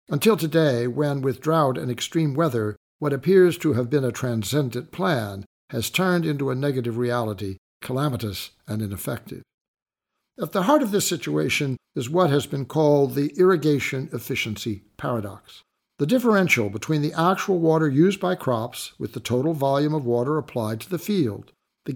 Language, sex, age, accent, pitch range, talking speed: English, male, 60-79, American, 120-170 Hz, 165 wpm